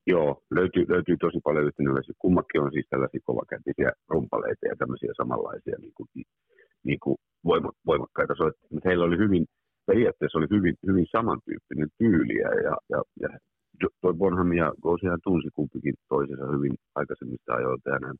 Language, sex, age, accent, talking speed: Finnish, male, 50-69, native, 140 wpm